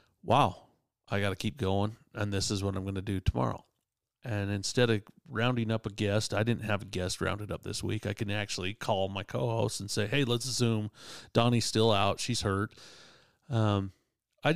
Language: English